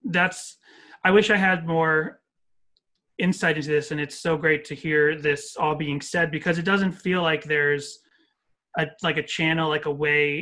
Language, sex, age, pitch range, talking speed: English, male, 30-49, 145-170 Hz, 185 wpm